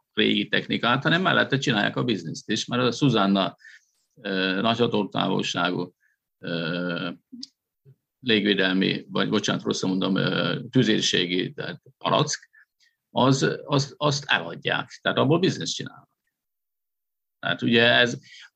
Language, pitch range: Hungarian, 105-140 Hz